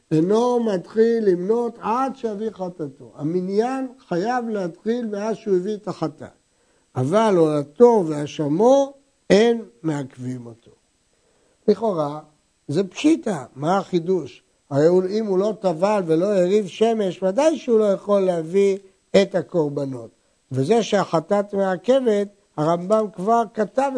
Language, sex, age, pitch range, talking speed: Hebrew, male, 60-79, 165-225 Hz, 115 wpm